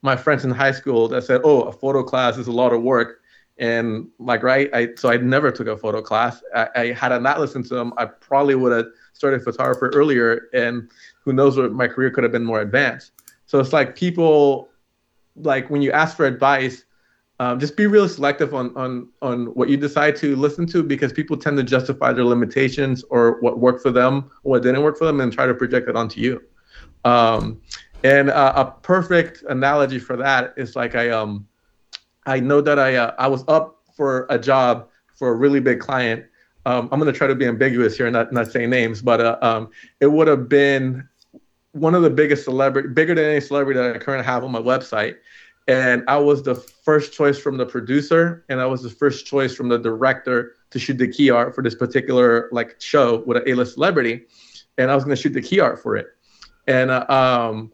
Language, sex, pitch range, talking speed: English, male, 120-140 Hz, 220 wpm